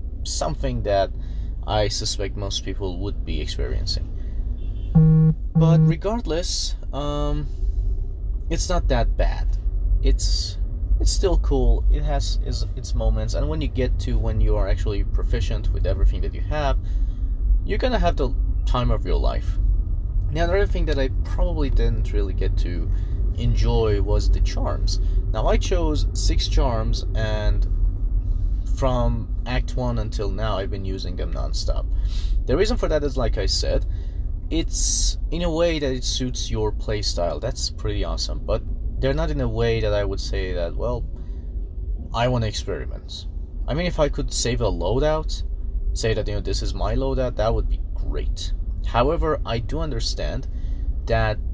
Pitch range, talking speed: 85-110 Hz, 165 wpm